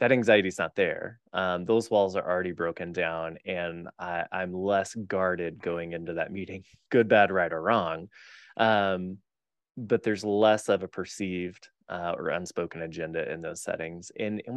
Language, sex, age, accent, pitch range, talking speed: English, male, 20-39, American, 85-100 Hz, 175 wpm